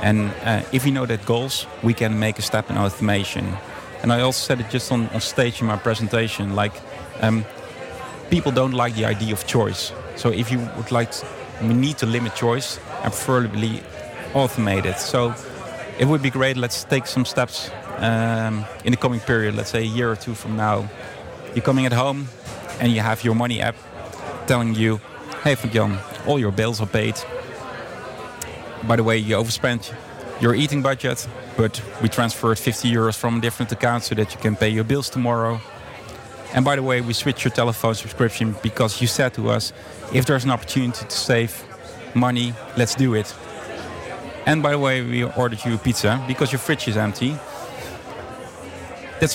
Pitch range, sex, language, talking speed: 110-130 Hz, male, English, 185 wpm